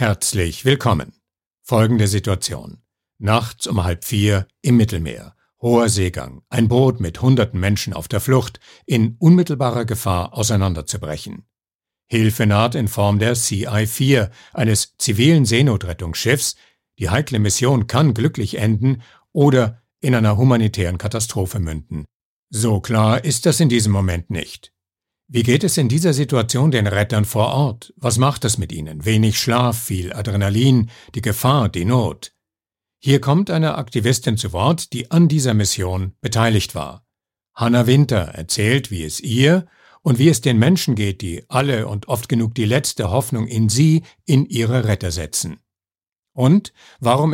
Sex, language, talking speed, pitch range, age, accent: male, German, 145 wpm, 100-130 Hz, 60-79, German